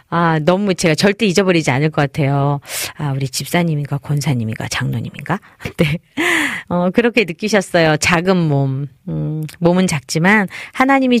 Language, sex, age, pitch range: Korean, female, 30-49, 155-220 Hz